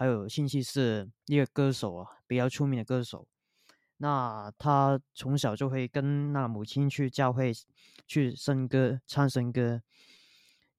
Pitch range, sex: 120-145 Hz, male